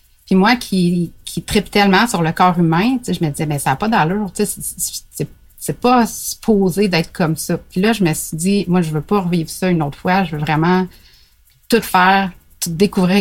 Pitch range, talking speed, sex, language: 160-195 Hz, 235 wpm, female, French